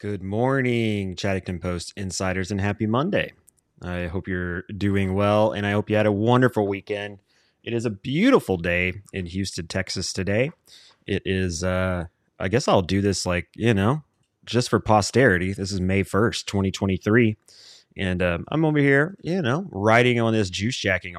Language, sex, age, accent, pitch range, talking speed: English, male, 30-49, American, 95-115 Hz, 175 wpm